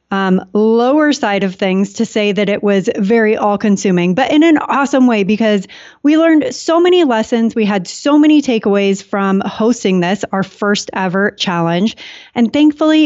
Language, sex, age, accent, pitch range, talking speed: English, female, 30-49, American, 195-255 Hz, 170 wpm